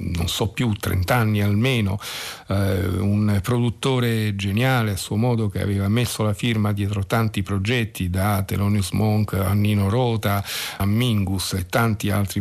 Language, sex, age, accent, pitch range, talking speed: Italian, male, 50-69, native, 95-115 Hz, 155 wpm